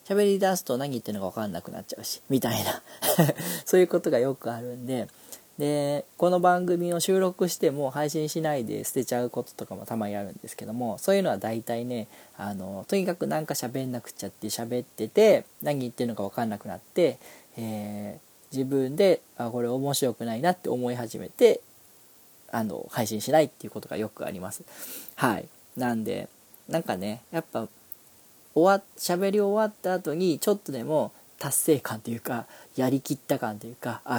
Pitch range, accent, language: 115-155 Hz, native, Japanese